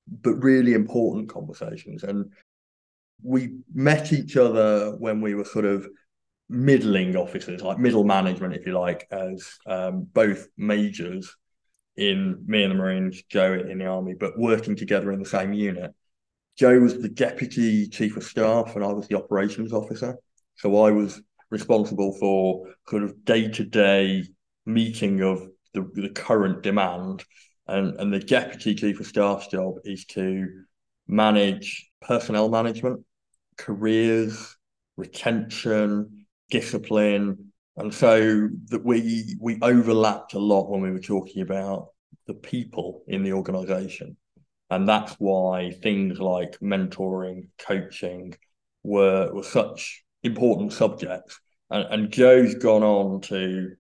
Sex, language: male, English